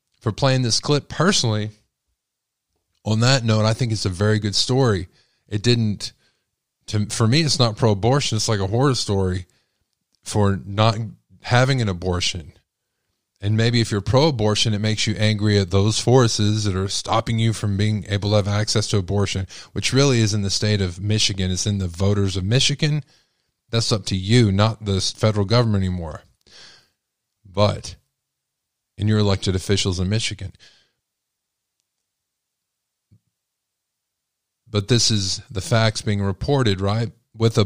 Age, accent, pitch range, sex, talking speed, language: 20-39, American, 100-115 Hz, male, 160 wpm, English